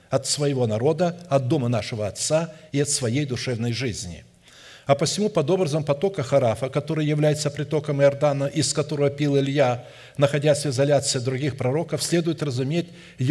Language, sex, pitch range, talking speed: Russian, male, 130-160 Hz, 150 wpm